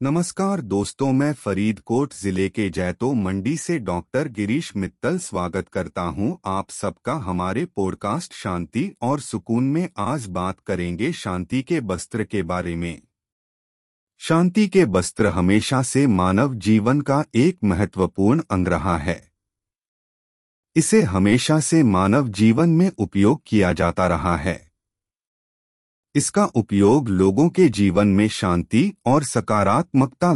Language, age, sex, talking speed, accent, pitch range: Hindi, 30-49, male, 130 wpm, native, 90-140 Hz